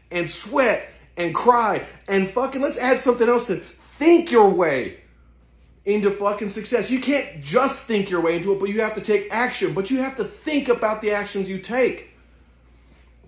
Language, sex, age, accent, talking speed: English, male, 30-49, American, 185 wpm